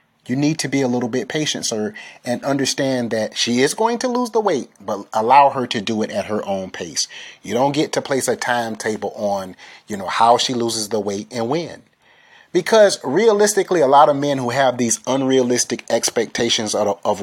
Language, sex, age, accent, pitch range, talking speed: English, male, 30-49, American, 110-140 Hz, 200 wpm